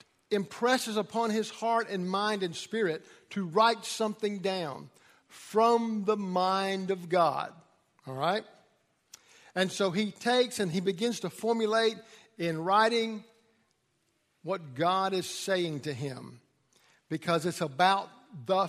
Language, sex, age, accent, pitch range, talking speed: English, male, 50-69, American, 170-215 Hz, 130 wpm